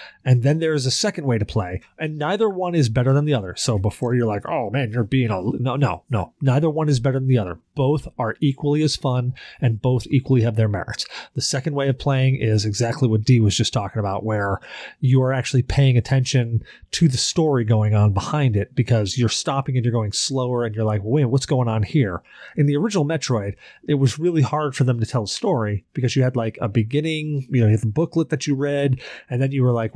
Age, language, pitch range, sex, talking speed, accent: 30-49, English, 115-145 Hz, male, 240 wpm, American